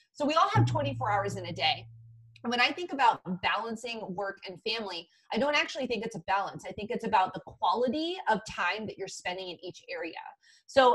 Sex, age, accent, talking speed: female, 30-49, American, 220 wpm